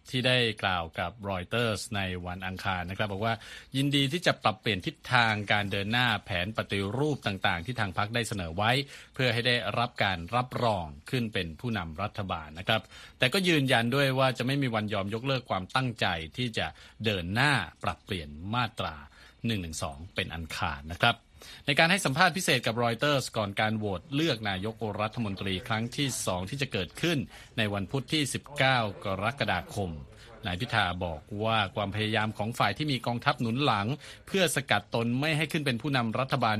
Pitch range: 100-130 Hz